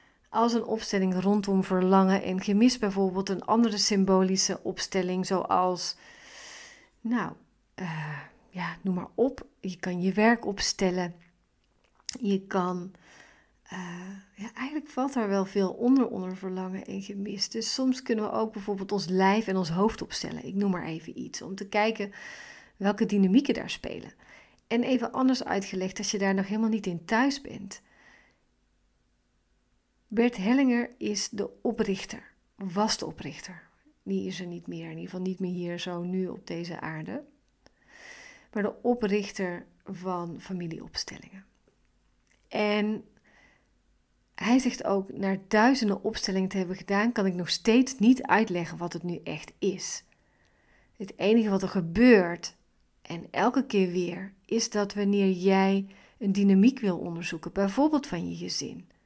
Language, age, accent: Dutch, 40-59, Dutch